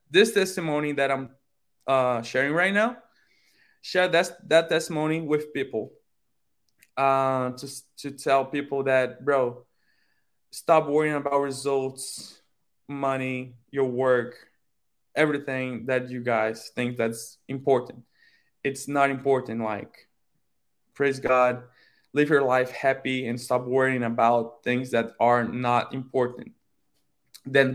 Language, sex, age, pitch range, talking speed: English, male, 20-39, 125-140 Hz, 115 wpm